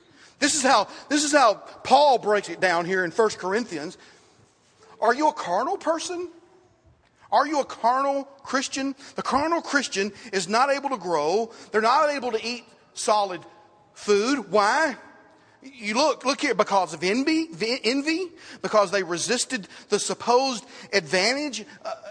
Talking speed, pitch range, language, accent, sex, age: 145 wpm, 215-290 Hz, English, American, male, 40-59